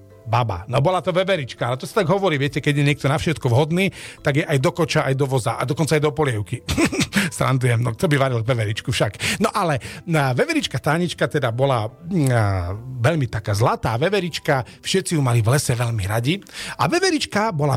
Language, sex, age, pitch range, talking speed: Slovak, male, 40-59, 130-180 Hz, 195 wpm